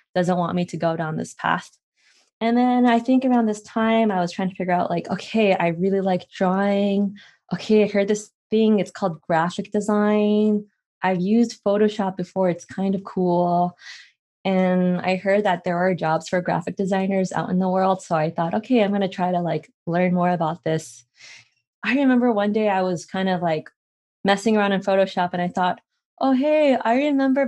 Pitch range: 175-210 Hz